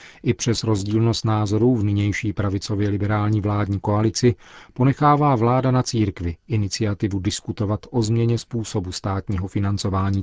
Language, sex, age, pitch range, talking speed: Czech, male, 40-59, 100-115 Hz, 125 wpm